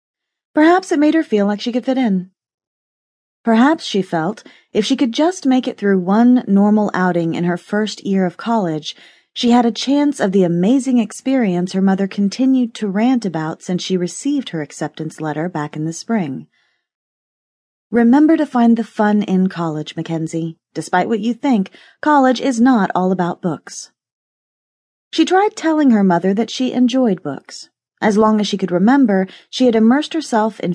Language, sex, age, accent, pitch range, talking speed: English, female, 30-49, American, 175-245 Hz, 180 wpm